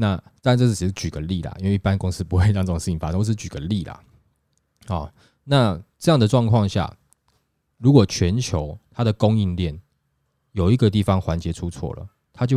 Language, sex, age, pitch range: Chinese, male, 20-39, 85-120 Hz